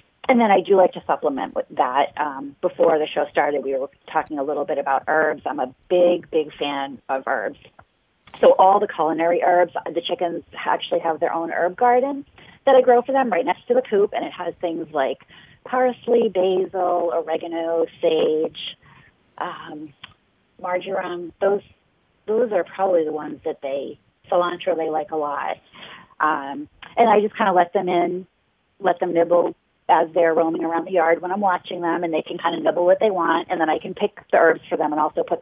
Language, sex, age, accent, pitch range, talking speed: English, female, 40-59, American, 160-200 Hz, 200 wpm